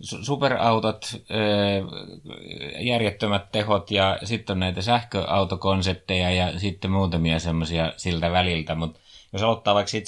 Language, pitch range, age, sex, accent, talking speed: Finnish, 85-95 Hz, 30-49, male, native, 115 wpm